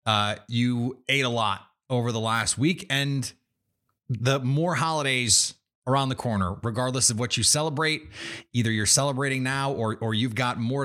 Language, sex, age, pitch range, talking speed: English, male, 30-49, 115-160 Hz, 165 wpm